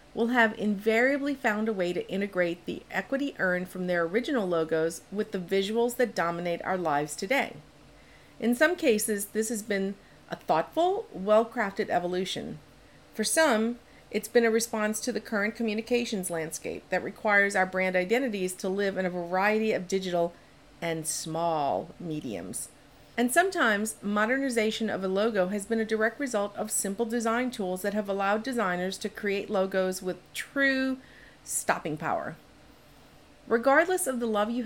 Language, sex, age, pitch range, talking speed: English, female, 50-69, 185-240 Hz, 155 wpm